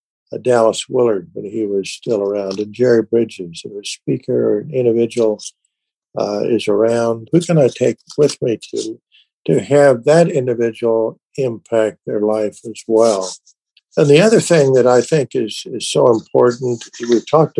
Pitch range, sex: 115-145 Hz, male